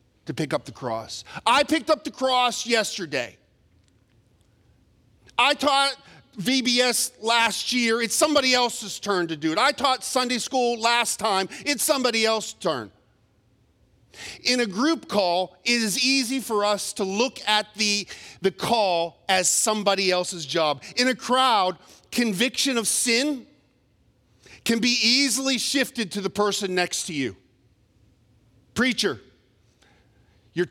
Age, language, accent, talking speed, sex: 40-59, English, American, 140 wpm, male